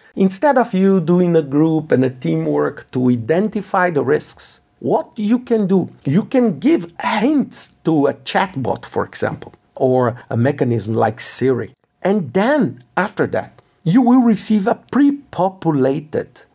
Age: 50-69